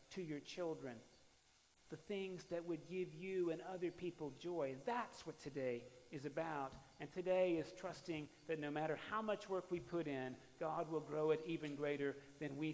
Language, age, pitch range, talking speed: English, 40-59, 120-150 Hz, 185 wpm